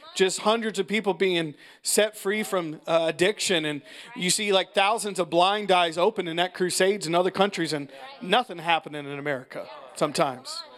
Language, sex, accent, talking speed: English, male, American, 175 wpm